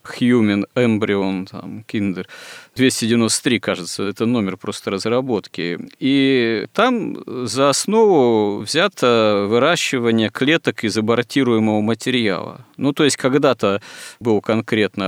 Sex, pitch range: male, 100-120 Hz